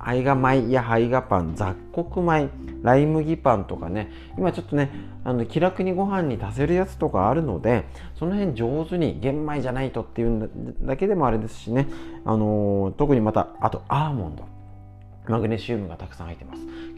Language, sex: Japanese, male